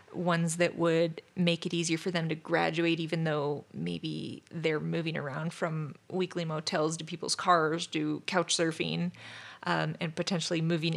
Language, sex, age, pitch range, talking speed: English, female, 30-49, 160-180 Hz, 160 wpm